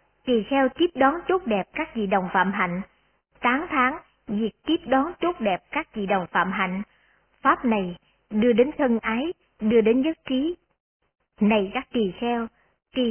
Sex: male